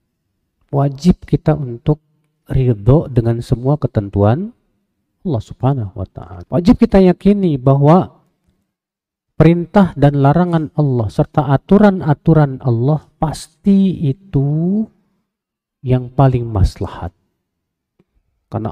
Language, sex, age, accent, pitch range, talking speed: Indonesian, male, 40-59, native, 105-145 Hz, 90 wpm